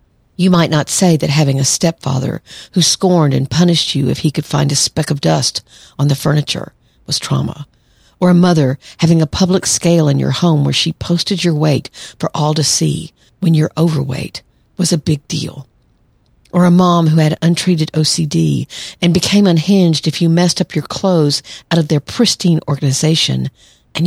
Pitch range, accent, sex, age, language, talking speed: 140-175 Hz, American, female, 50-69, English, 185 wpm